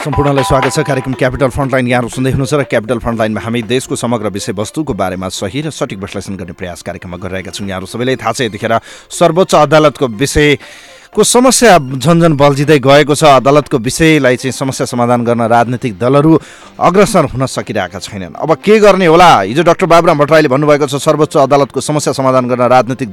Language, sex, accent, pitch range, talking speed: English, male, Indian, 125-165 Hz, 165 wpm